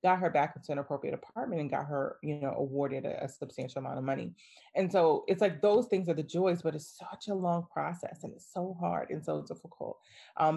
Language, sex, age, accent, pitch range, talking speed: English, female, 30-49, American, 140-165 Hz, 240 wpm